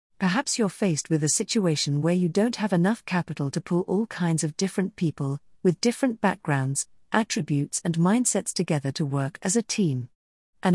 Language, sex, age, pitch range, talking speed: English, female, 40-59, 155-210 Hz, 180 wpm